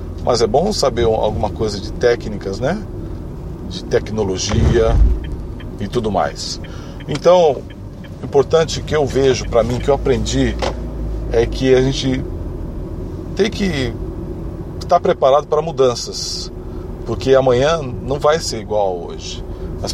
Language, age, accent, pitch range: Portuguese, 40-59, Brazilian, 95-140 Hz